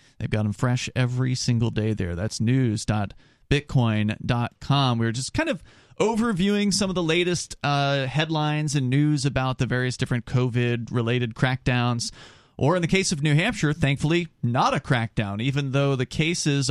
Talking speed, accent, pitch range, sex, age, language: 160 wpm, American, 120-155 Hz, male, 30-49, English